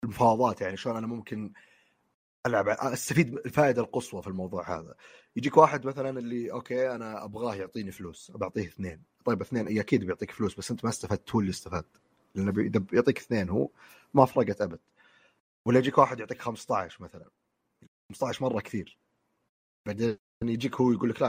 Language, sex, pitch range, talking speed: Arabic, male, 105-140 Hz, 165 wpm